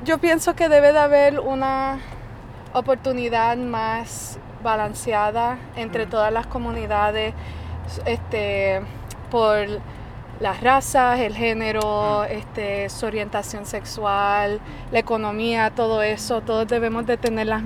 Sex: female